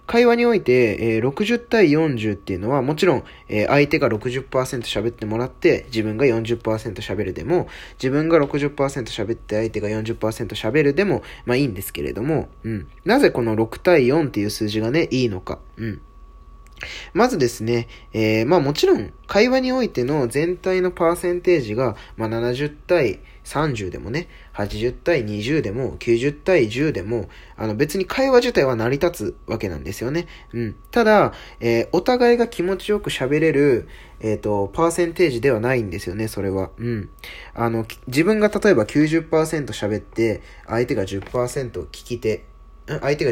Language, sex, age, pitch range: Japanese, male, 20-39, 105-160 Hz